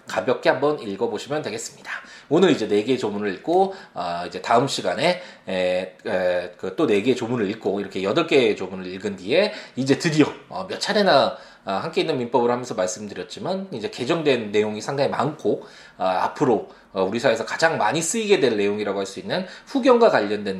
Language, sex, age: Korean, male, 20-39